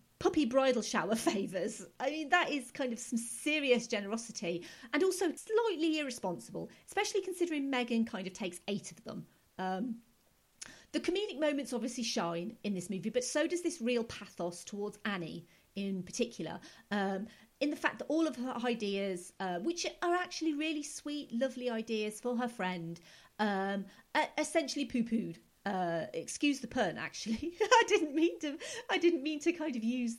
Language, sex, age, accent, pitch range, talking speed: English, female, 40-59, British, 195-295 Hz, 165 wpm